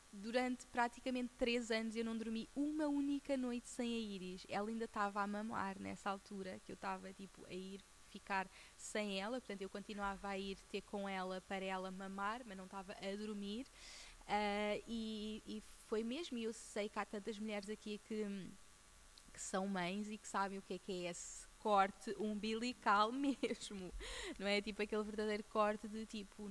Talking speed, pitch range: 185 wpm, 195-240 Hz